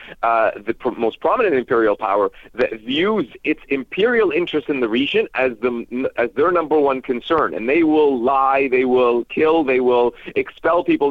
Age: 40-59